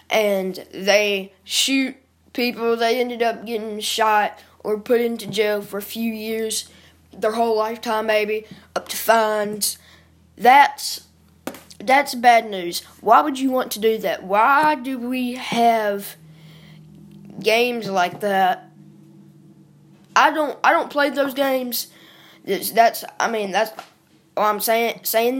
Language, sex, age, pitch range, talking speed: English, female, 10-29, 205-245 Hz, 135 wpm